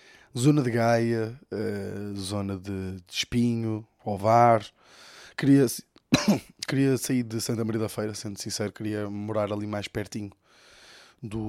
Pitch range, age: 105-125 Hz, 20-39